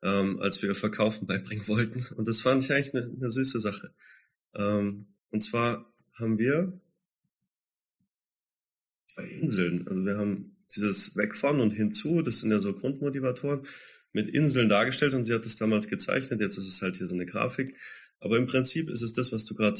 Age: 30-49